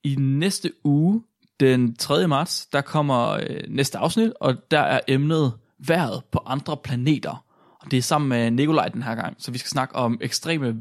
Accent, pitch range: native, 120-165 Hz